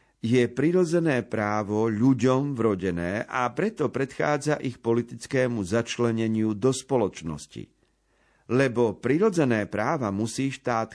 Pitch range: 105-125 Hz